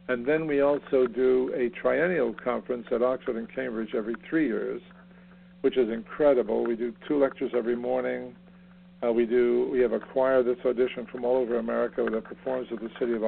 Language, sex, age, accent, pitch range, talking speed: English, male, 50-69, American, 125-180 Hz, 200 wpm